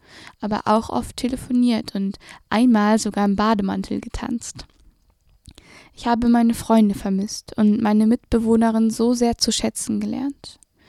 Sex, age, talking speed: female, 10-29, 125 wpm